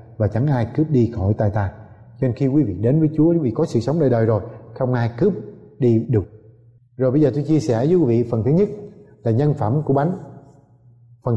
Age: 20-39